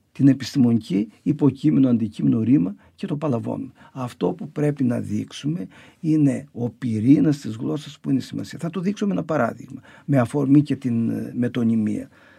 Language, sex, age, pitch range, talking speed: Greek, male, 50-69, 130-165 Hz, 150 wpm